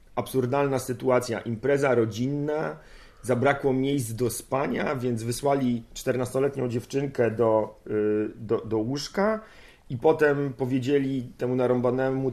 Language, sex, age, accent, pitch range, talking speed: Polish, male, 40-59, native, 120-140 Hz, 105 wpm